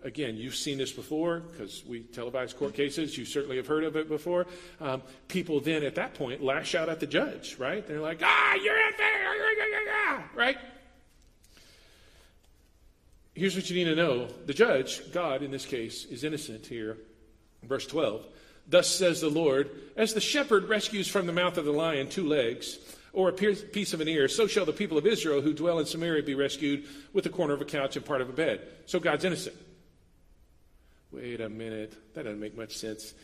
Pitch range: 140-205 Hz